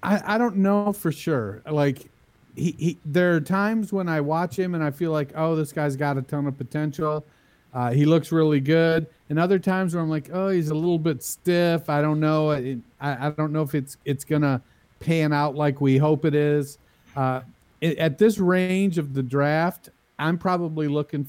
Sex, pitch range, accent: male, 130-155 Hz, American